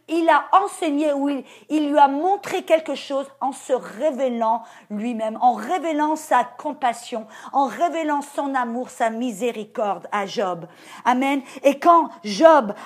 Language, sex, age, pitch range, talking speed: English, female, 50-69, 235-310 Hz, 140 wpm